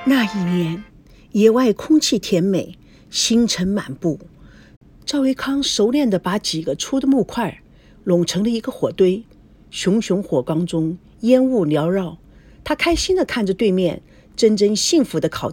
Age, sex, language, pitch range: 50-69, female, Chinese, 185-285 Hz